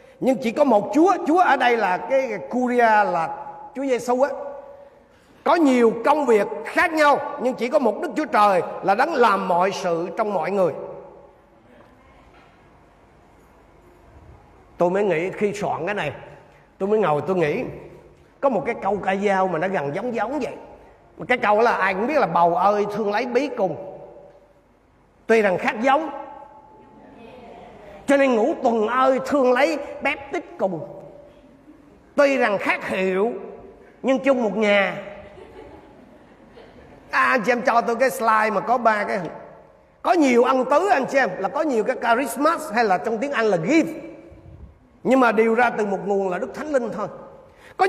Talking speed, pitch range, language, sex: 180 wpm, 205-280 Hz, Vietnamese, male